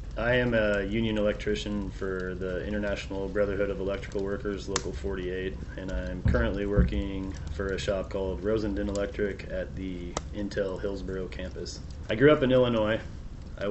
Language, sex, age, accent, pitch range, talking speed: English, male, 30-49, American, 90-105 Hz, 155 wpm